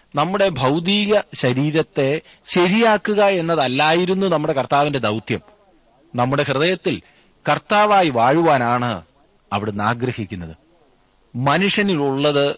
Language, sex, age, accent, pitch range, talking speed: Malayalam, male, 30-49, native, 115-160 Hz, 70 wpm